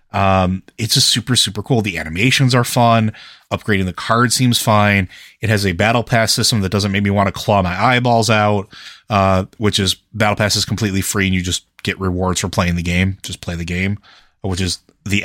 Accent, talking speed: American, 215 wpm